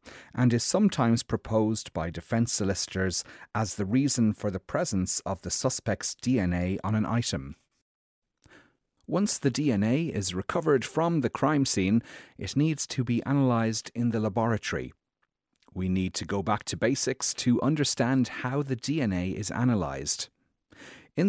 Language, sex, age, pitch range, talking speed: English, male, 30-49, 95-135 Hz, 145 wpm